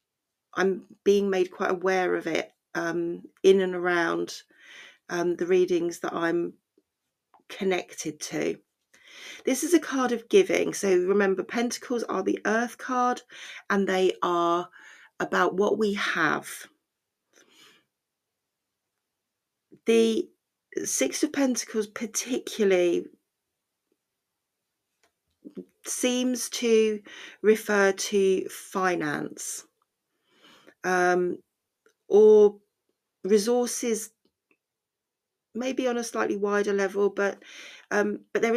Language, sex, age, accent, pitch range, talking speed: English, female, 40-59, British, 185-245 Hz, 95 wpm